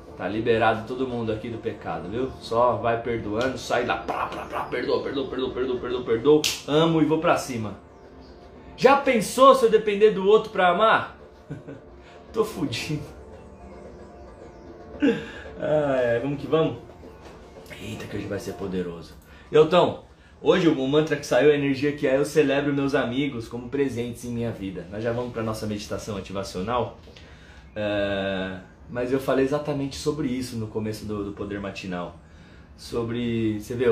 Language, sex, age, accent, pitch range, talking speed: Portuguese, male, 20-39, Brazilian, 90-145 Hz, 170 wpm